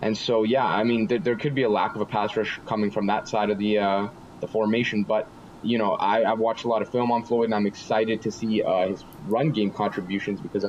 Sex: male